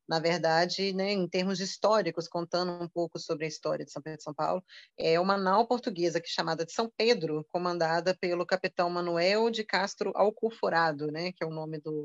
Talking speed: 200 wpm